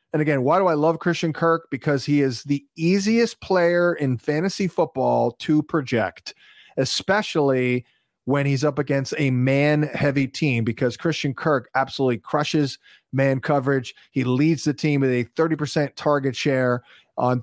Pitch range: 125-155 Hz